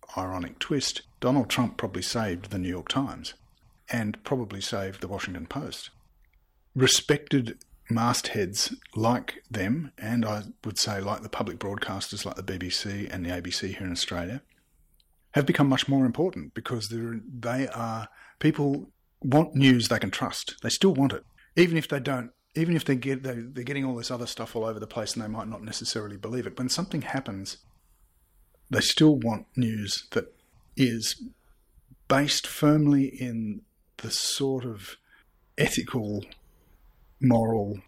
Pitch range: 100-130 Hz